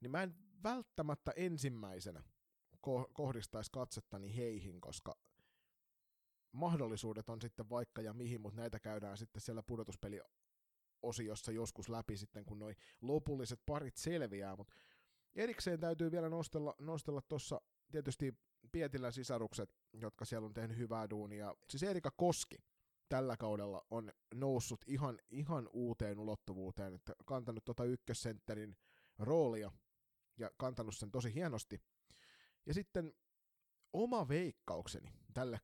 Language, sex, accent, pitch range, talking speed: Finnish, male, native, 110-150 Hz, 120 wpm